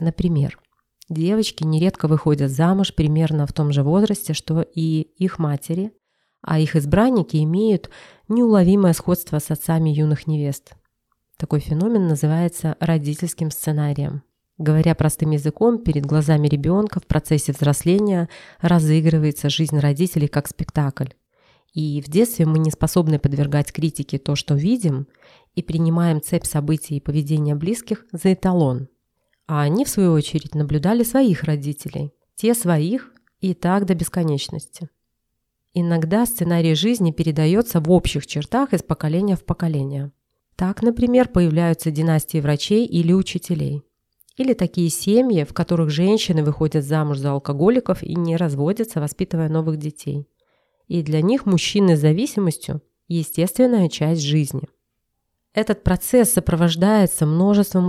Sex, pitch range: female, 150-185 Hz